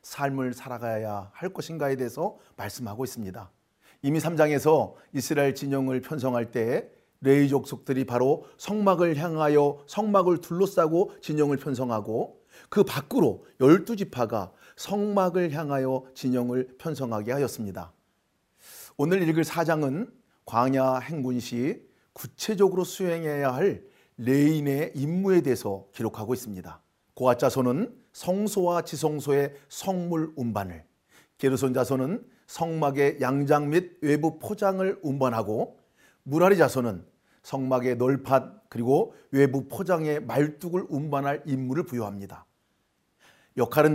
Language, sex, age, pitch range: Korean, male, 40-59, 125-160 Hz